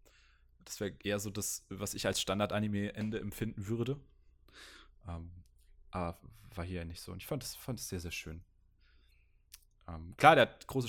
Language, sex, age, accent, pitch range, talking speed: German, male, 20-39, German, 90-115 Hz, 170 wpm